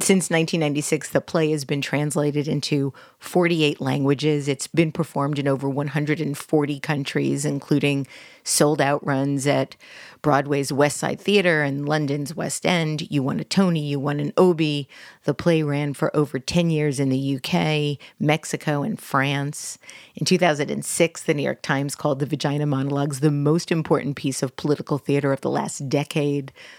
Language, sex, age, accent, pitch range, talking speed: English, female, 40-59, American, 140-160 Hz, 160 wpm